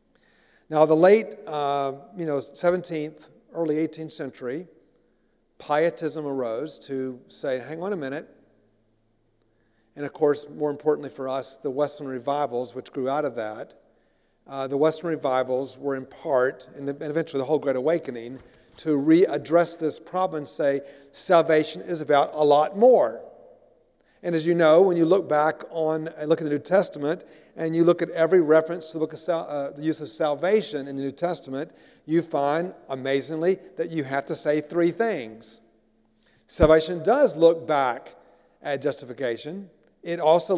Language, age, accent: English, 50-69, American